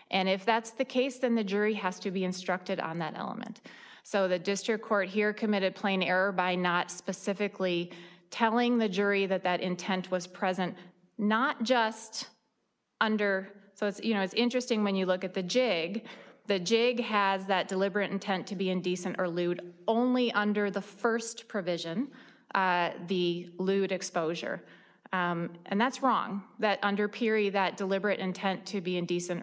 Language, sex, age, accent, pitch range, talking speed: English, female, 20-39, American, 180-215 Hz, 165 wpm